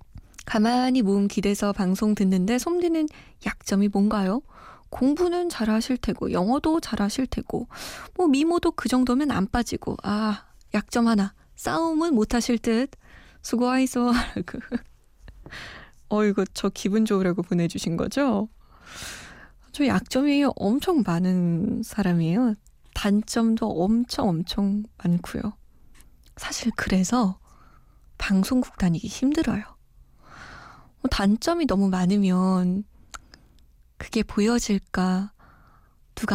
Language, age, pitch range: Korean, 20-39, 190-240 Hz